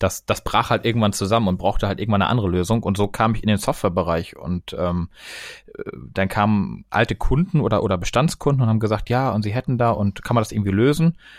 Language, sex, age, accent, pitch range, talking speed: German, male, 30-49, German, 100-120 Hz, 225 wpm